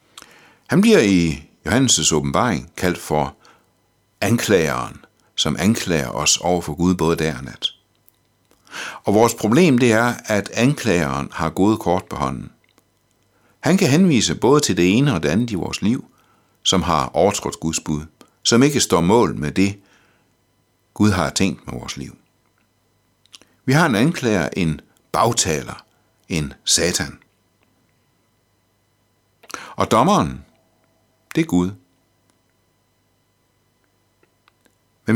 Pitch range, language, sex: 80-110 Hz, Danish, male